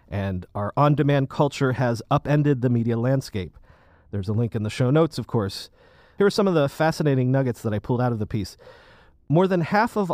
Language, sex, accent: English, male, American